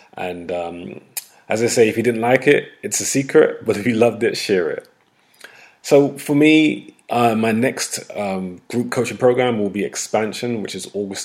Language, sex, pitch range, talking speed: English, male, 95-115 Hz, 190 wpm